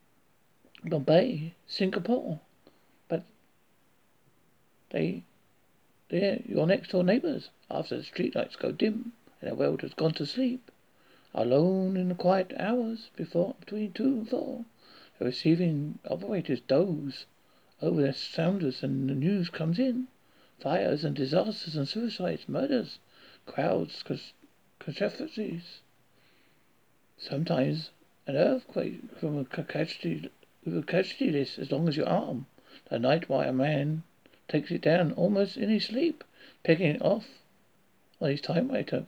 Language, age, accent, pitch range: English, 60-79, British, 155-215 Hz